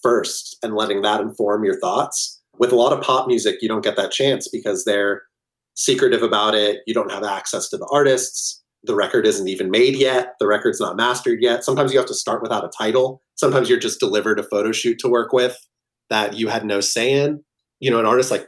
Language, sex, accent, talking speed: English, male, American, 225 wpm